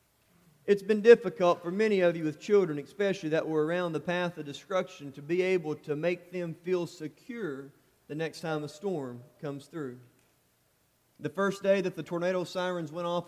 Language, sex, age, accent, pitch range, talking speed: English, male, 30-49, American, 150-205 Hz, 185 wpm